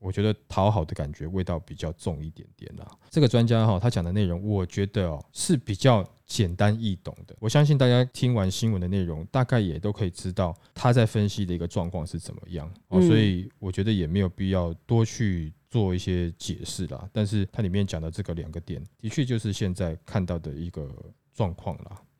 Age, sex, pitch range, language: 20-39, male, 90-125 Hz, Chinese